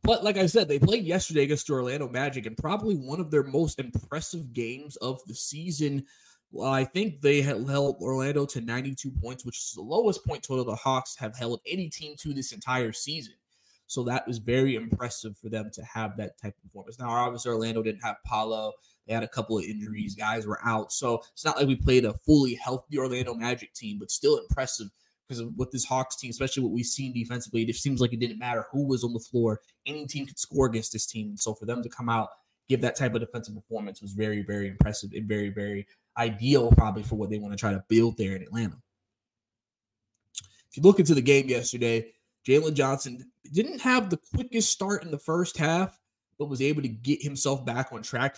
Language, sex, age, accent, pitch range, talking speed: English, male, 20-39, American, 110-140 Hz, 220 wpm